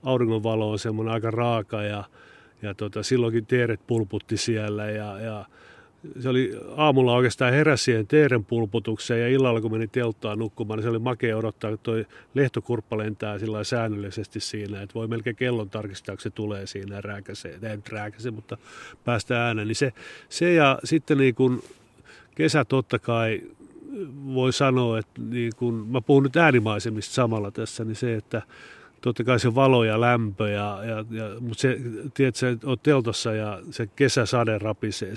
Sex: male